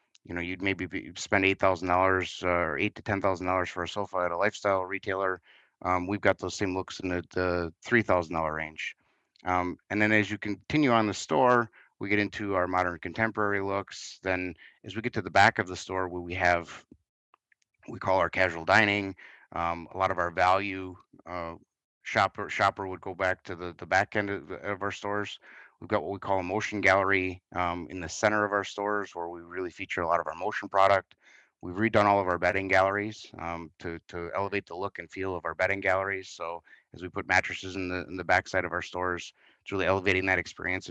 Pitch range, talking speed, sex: 90-100 Hz, 225 wpm, male